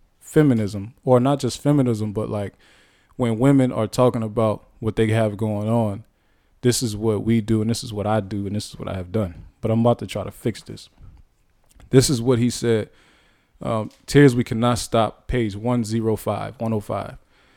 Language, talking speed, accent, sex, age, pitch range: English, 190 wpm, American, male, 20-39, 105-125 Hz